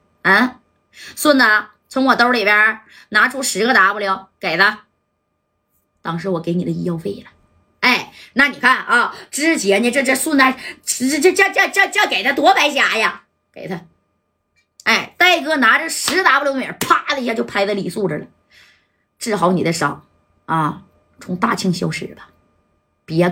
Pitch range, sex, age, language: 185-255 Hz, female, 20-39, Chinese